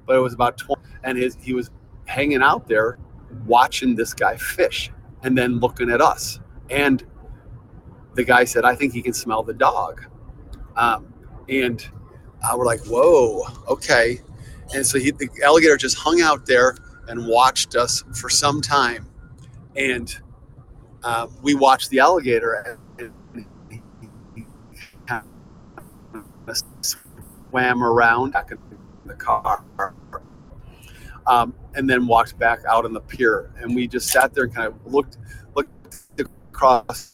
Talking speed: 140 wpm